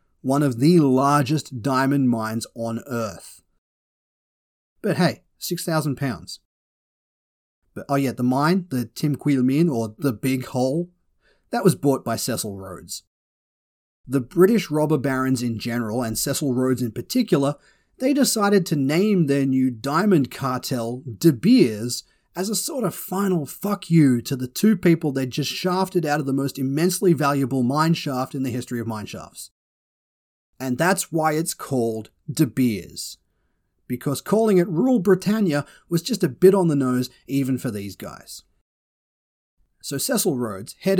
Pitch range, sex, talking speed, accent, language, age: 115-165 Hz, male, 150 wpm, Australian, English, 30-49